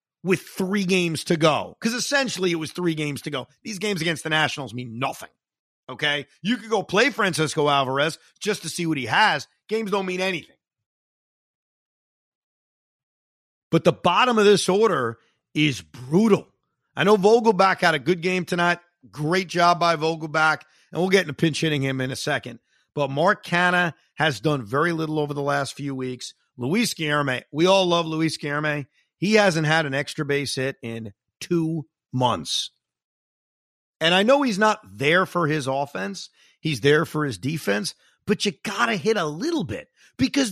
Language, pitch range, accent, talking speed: English, 140-185 Hz, American, 175 wpm